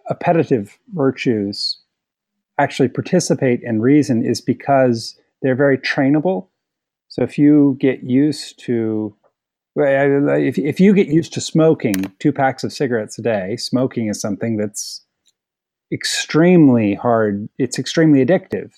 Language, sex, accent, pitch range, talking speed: English, male, American, 120-150 Hz, 125 wpm